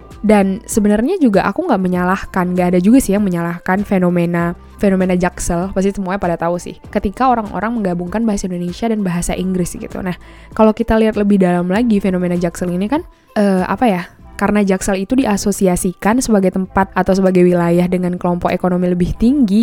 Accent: native